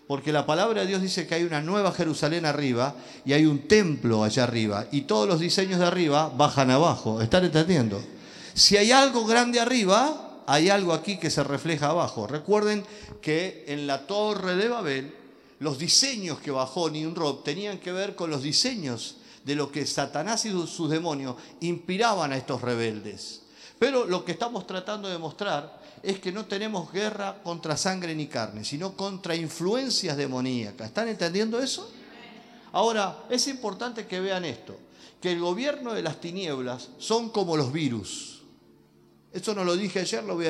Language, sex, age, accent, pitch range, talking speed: Spanish, male, 50-69, Argentinian, 145-205 Hz, 175 wpm